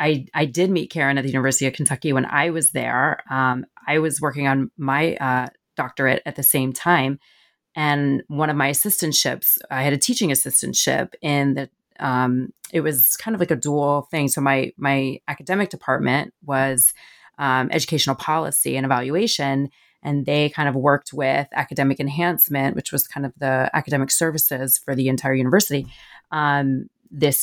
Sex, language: female, English